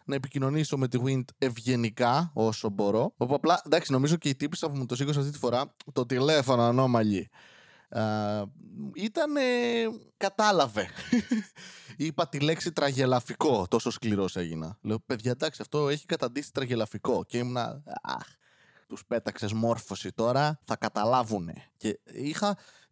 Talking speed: 130 wpm